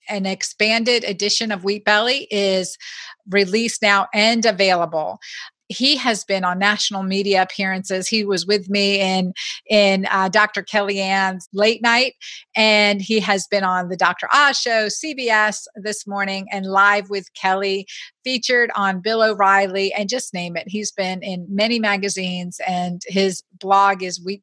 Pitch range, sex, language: 195-245 Hz, female, English